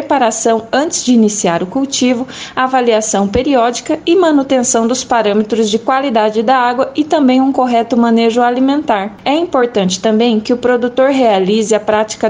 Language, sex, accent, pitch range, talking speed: Portuguese, female, Brazilian, 215-260 Hz, 150 wpm